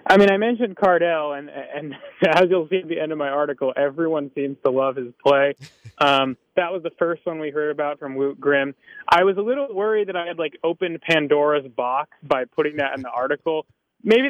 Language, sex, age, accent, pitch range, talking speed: English, male, 20-39, American, 135-170 Hz, 225 wpm